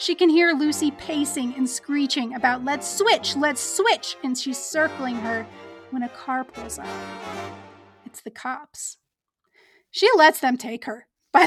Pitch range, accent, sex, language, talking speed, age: 245-320 Hz, American, female, English, 155 wpm, 30-49